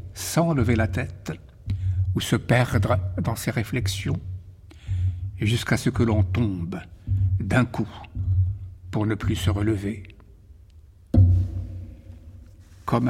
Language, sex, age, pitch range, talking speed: French, male, 60-79, 95-140 Hz, 105 wpm